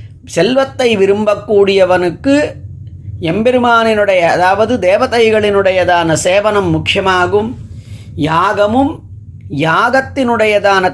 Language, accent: Tamil, native